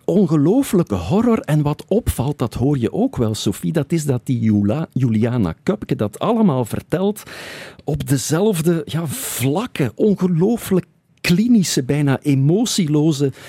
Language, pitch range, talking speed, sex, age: Dutch, 100-145 Hz, 120 wpm, male, 50-69